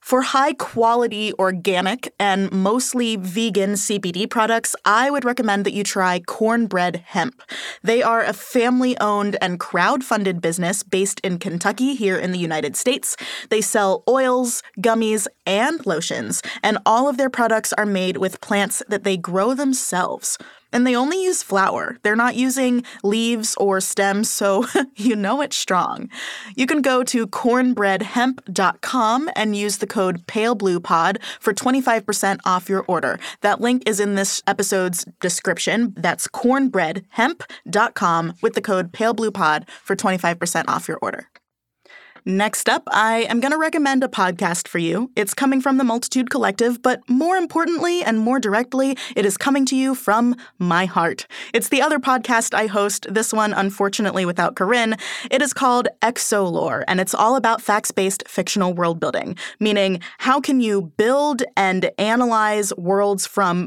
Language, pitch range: English, 195-250 Hz